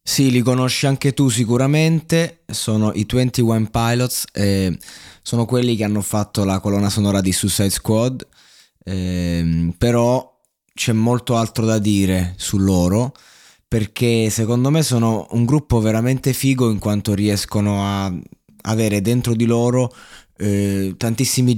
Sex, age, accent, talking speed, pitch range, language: male, 20-39, native, 135 wpm, 105-125 Hz, Italian